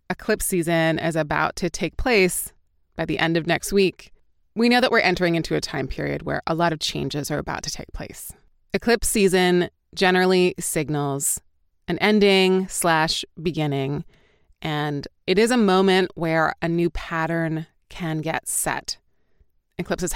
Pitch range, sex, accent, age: 160-185 Hz, female, American, 20-39